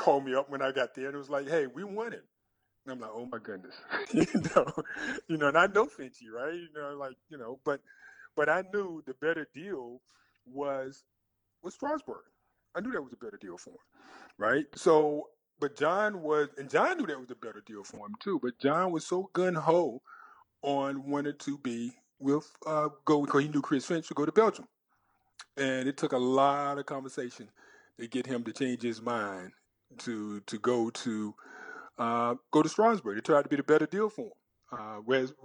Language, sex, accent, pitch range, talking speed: English, male, American, 125-165 Hz, 210 wpm